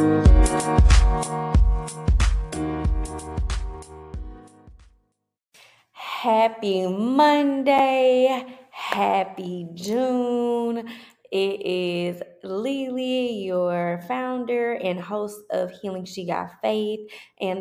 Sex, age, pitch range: female, 20-39, 175-235 Hz